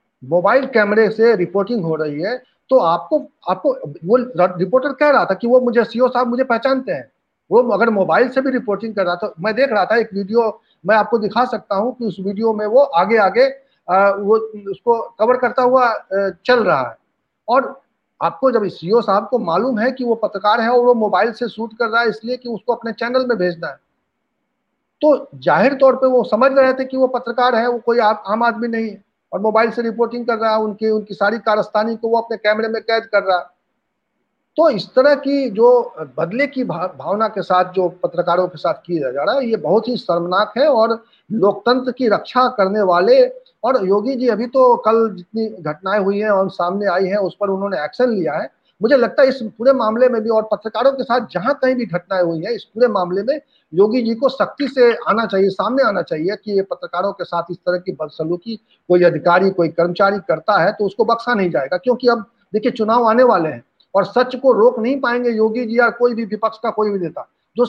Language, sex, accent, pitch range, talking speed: Hindi, male, native, 195-245 Hz, 220 wpm